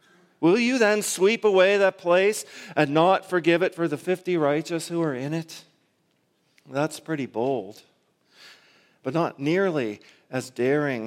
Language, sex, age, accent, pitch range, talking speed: English, male, 40-59, American, 135-180 Hz, 145 wpm